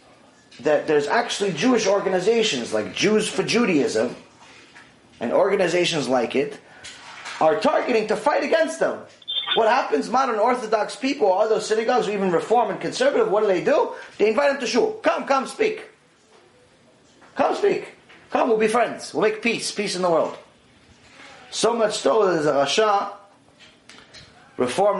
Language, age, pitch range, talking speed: English, 30-49, 160-230 Hz, 155 wpm